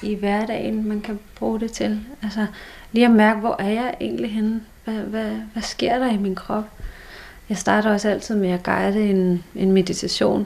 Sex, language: female, Danish